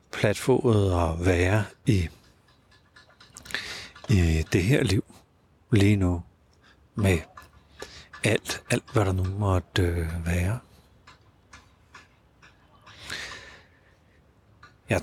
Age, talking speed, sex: 60-79, 70 wpm, male